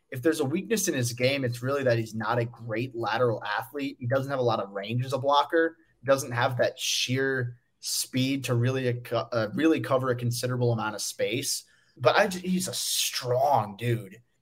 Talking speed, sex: 210 wpm, male